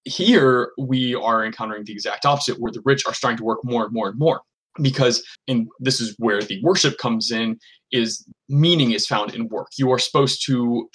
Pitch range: 115-135 Hz